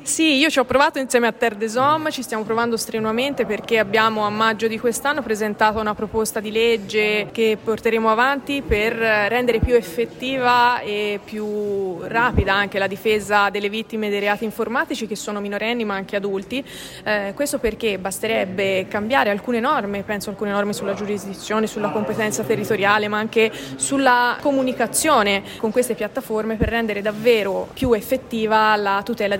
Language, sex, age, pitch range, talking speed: Italian, female, 20-39, 210-240 Hz, 160 wpm